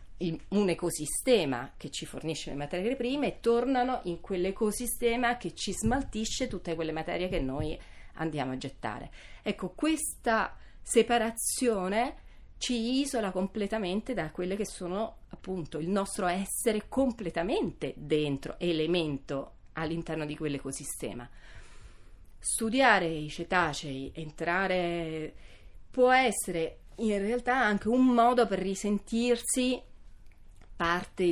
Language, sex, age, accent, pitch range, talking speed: Italian, female, 30-49, native, 150-215 Hz, 110 wpm